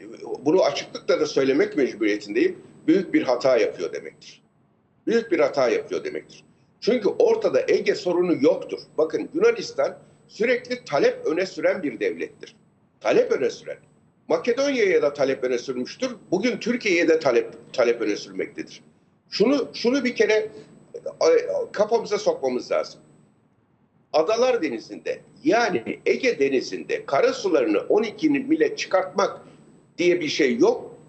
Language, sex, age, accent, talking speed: Turkish, male, 60-79, native, 120 wpm